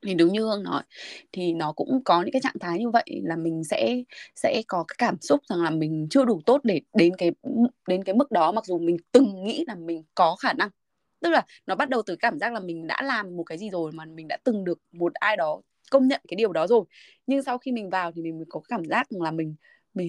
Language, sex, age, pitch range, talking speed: Vietnamese, female, 20-39, 165-235 Hz, 270 wpm